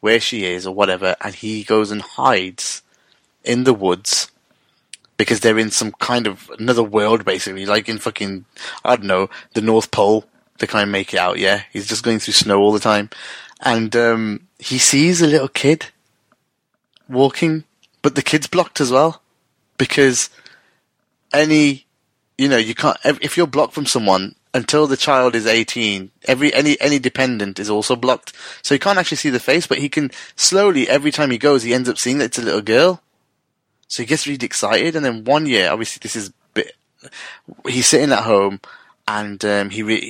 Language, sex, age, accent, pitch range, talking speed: English, male, 20-39, British, 105-140 Hz, 190 wpm